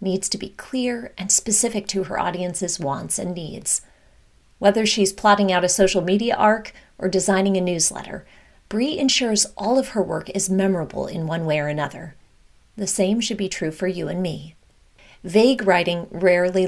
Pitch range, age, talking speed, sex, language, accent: 180-215 Hz, 30-49, 175 wpm, female, English, American